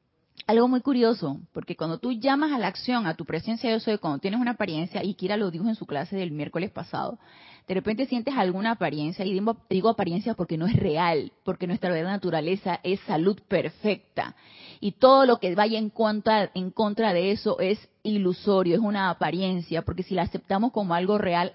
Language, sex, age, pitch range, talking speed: Spanish, female, 30-49, 170-215 Hz, 200 wpm